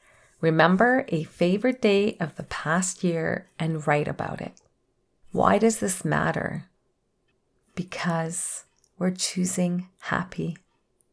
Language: English